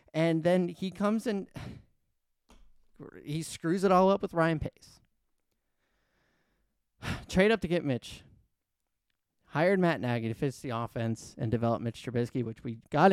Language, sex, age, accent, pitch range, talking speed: English, male, 30-49, American, 120-180 Hz, 145 wpm